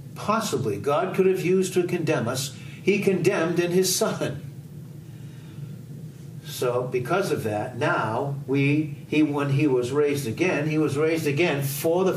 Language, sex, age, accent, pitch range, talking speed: English, male, 60-79, American, 135-170 Hz, 155 wpm